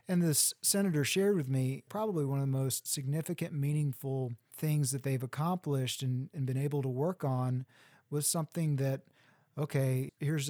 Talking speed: 165 wpm